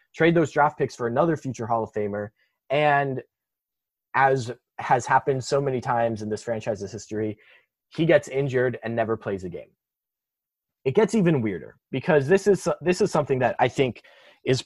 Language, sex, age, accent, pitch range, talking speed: English, male, 20-39, American, 115-155 Hz, 175 wpm